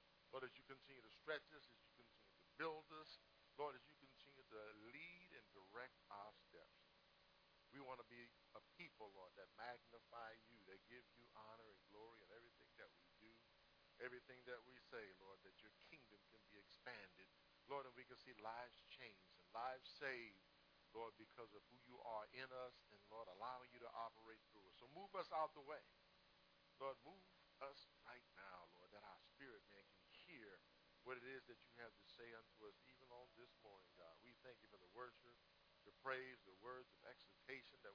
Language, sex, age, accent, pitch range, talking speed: English, male, 50-69, American, 110-130 Hz, 200 wpm